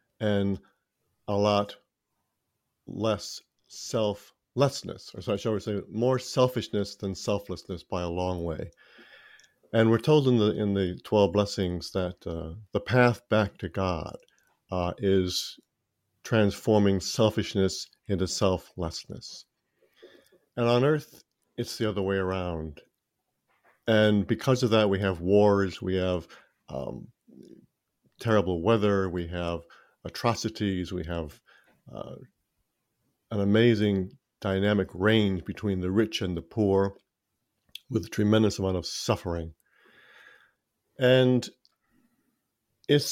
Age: 50-69